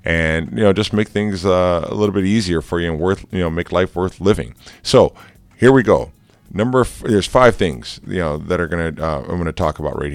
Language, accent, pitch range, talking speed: English, American, 80-95 Hz, 240 wpm